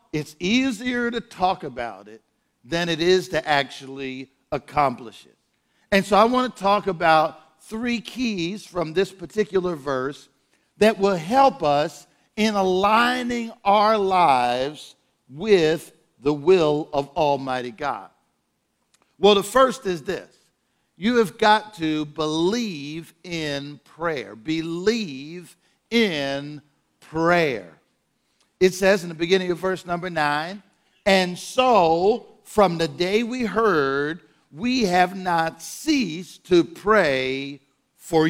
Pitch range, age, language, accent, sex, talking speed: 160-215 Hz, 50-69, English, American, male, 120 wpm